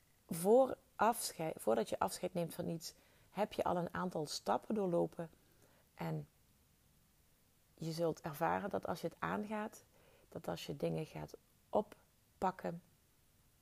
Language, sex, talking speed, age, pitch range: Dutch, female, 130 wpm, 30-49, 150-185 Hz